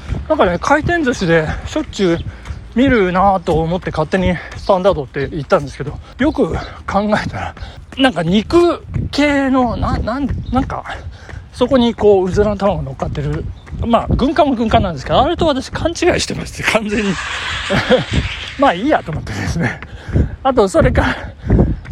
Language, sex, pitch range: Japanese, male, 180-275 Hz